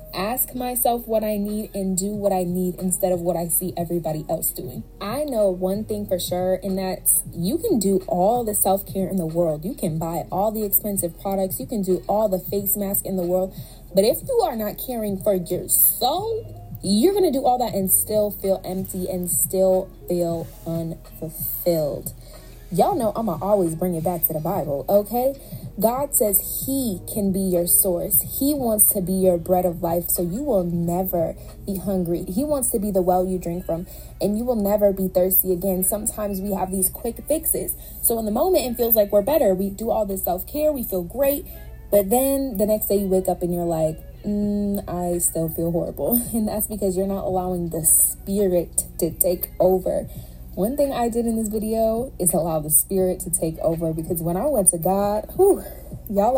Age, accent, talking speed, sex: 20-39, American, 210 wpm, female